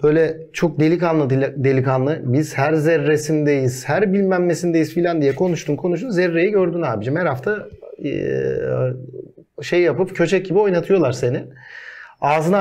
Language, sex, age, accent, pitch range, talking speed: Turkish, male, 40-59, native, 135-185 Hz, 120 wpm